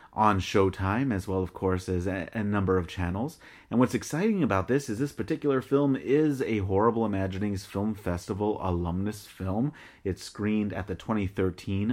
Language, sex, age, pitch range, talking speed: English, male, 30-49, 90-120 Hz, 170 wpm